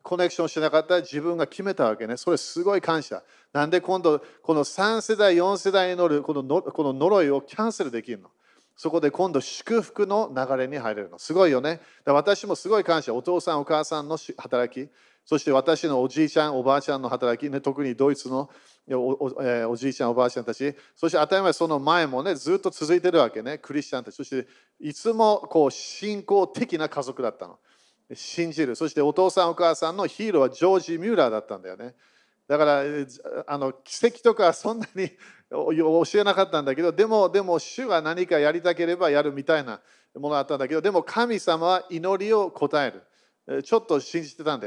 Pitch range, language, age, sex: 140-185 Hz, Japanese, 40-59, male